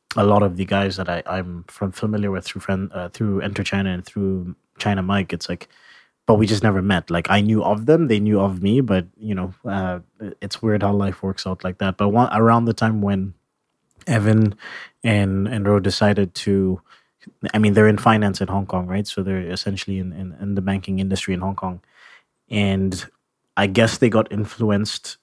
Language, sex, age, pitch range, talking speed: English, male, 20-39, 95-105 Hz, 205 wpm